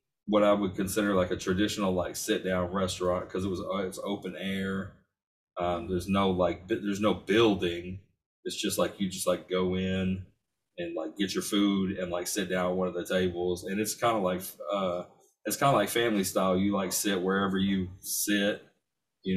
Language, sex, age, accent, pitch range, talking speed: English, male, 30-49, American, 90-100 Hz, 200 wpm